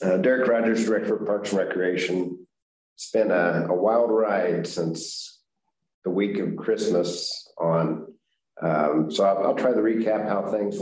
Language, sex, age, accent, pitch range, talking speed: English, male, 50-69, American, 85-105 Hz, 160 wpm